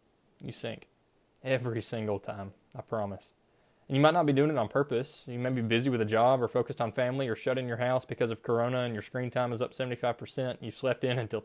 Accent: American